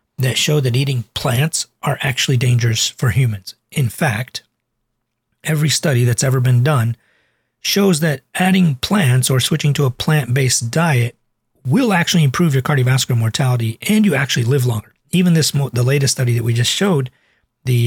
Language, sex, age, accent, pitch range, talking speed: English, male, 40-59, American, 120-145 Hz, 165 wpm